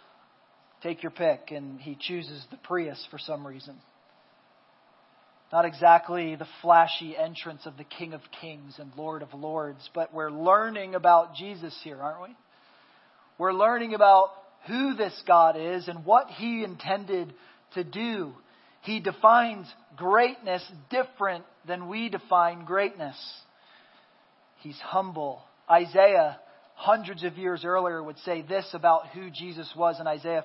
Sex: male